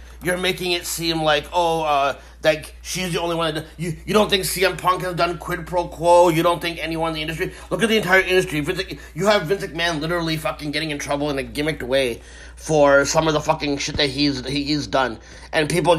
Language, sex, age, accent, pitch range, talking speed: English, male, 30-49, American, 130-165 Hz, 235 wpm